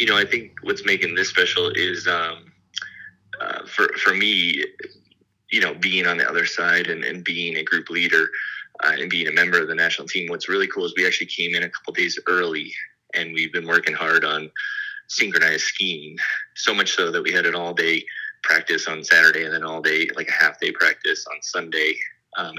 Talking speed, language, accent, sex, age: 210 wpm, English, American, male, 20-39